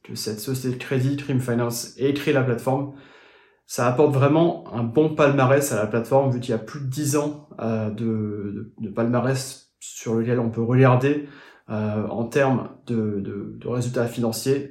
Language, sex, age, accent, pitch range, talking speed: French, male, 30-49, French, 115-140 Hz, 180 wpm